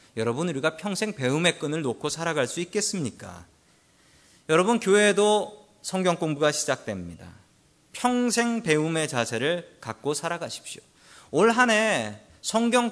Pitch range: 135-200 Hz